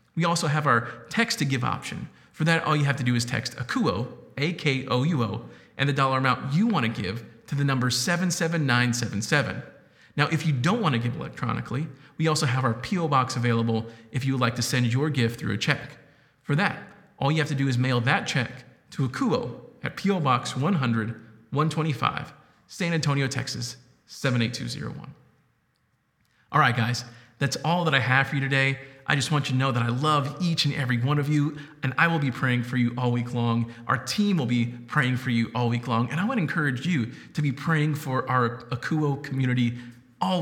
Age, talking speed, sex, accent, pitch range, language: 40-59, 200 wpm, male, American, 120-155 Hz, English